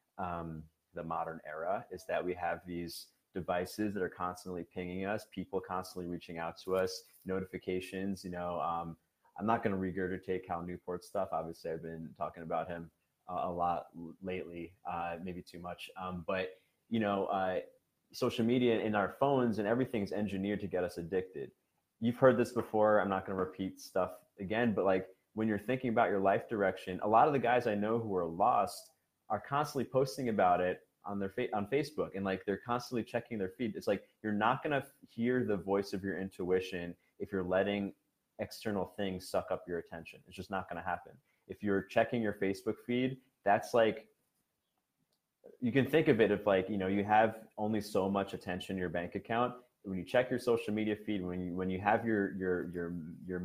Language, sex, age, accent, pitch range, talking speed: English, male, 30-49, American, 90-110 Hz, 205 wpm